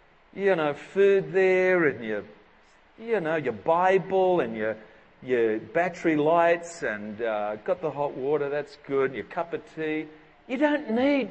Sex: male